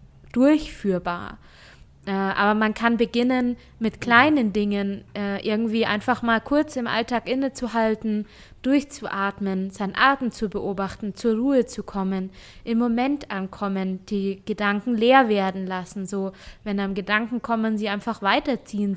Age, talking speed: 20-39, 125 wpm